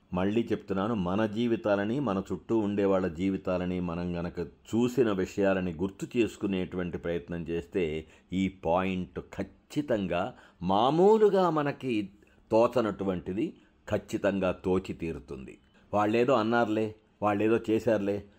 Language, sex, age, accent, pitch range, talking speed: Telugu, male, 60-79, native, 90-110 Hz, 100 wpm